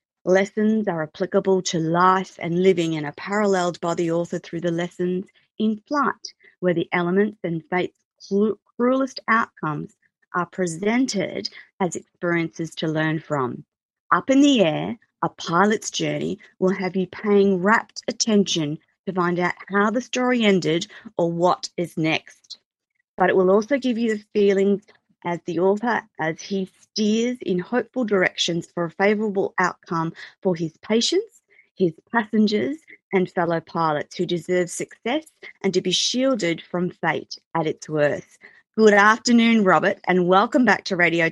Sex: female